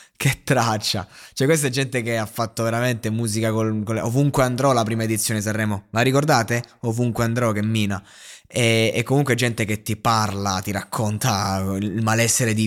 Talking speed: 180 wpm